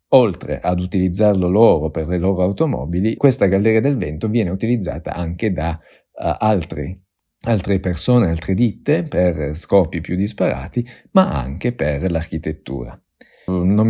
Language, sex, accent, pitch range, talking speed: Italian, male, native, 85-110 Hz, 135 wpm